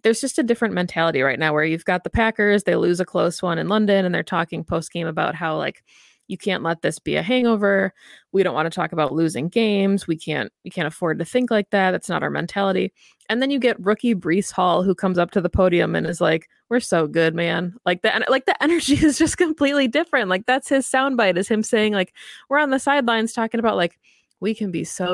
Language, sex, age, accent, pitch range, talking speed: English, female, 20-39, American, 175-230 Hz, 245 wpm